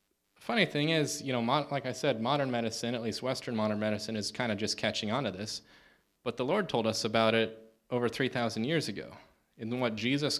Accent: American